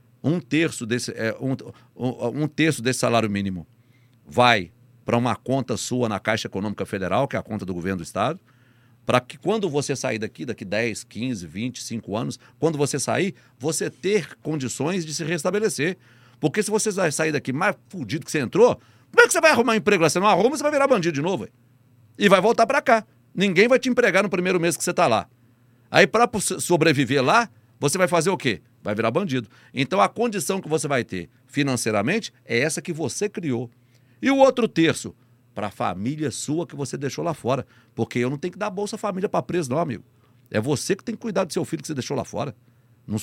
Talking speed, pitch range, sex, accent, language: 210 wpm, 120-185 Hz, male, Brazilian, Portuguese